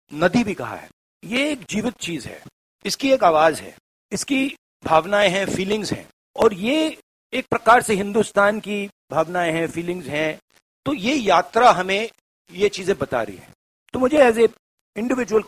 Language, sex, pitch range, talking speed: Bengali, male, 125-210 Hz, 165 wpm